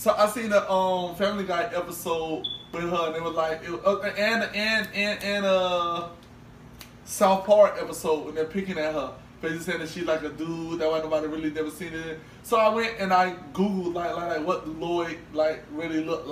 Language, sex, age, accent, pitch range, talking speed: English, male, 20-39, American, 155-190 Hz, 215 wpm